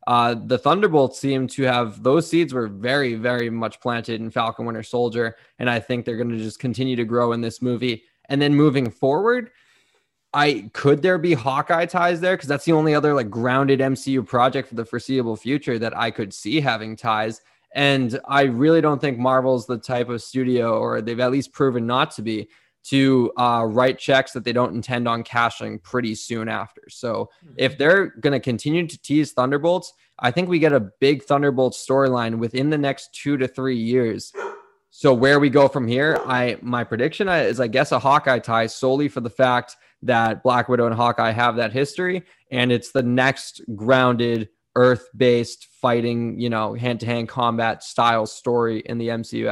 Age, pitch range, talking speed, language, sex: 20-39, 115-140 Hz, 190 wpm, English, male